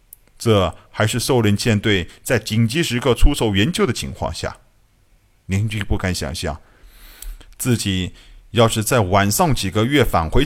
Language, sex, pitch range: Chinese, male, 100-130 Hz